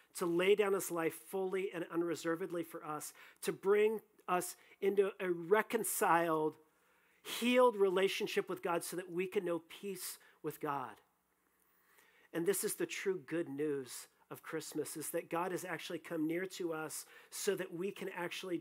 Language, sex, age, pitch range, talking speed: English, male, 40-59, 165-215 Hz, 165 wpm